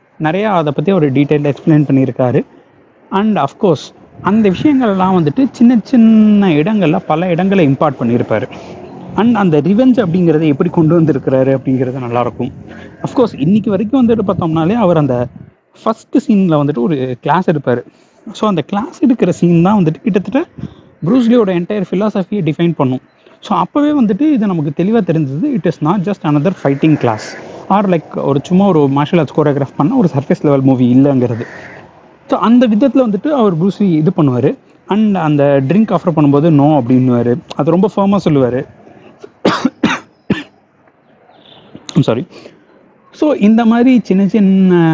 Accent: native